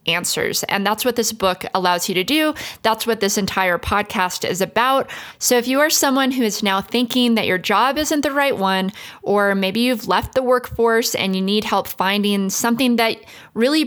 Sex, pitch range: female, 195-250 Hz